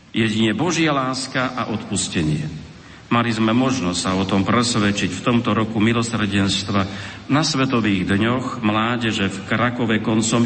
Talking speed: 130 wpm